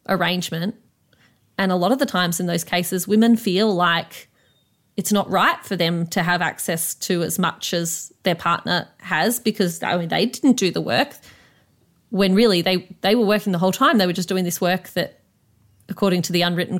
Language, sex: English, female